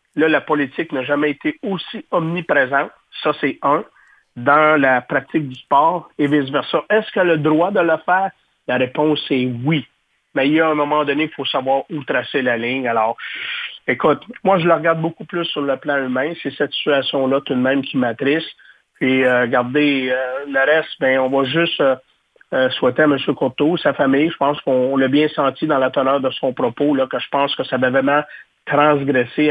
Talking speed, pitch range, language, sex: 210 wpm, 130-155 Hz, French, male